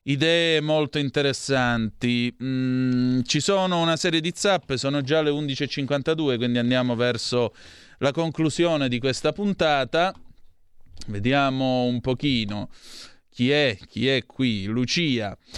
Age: 30-49